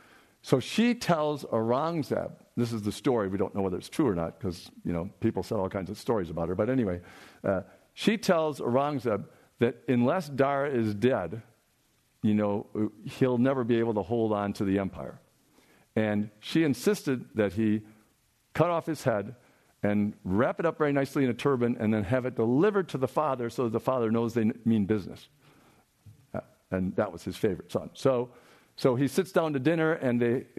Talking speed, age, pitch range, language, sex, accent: 195 wpm, 50-69, 110-140 Hz, English, male, American